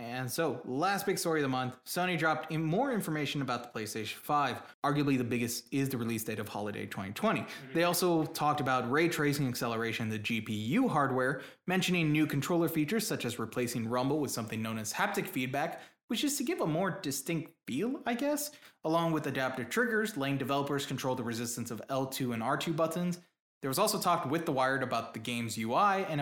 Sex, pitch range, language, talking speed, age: male, 125-165 Hz, English, 200 wpm, 20-39